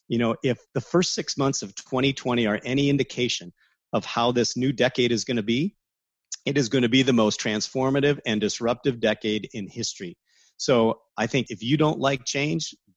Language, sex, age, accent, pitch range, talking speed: English, male, 40-59, American, 110-135 Hz, 195 wpm